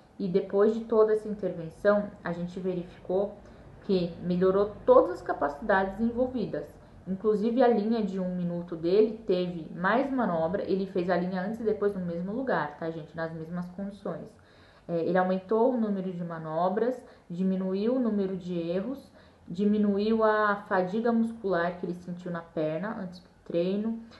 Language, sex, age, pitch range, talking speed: Portuguese, female, 10-29, 175-215 Hz, 155 wpm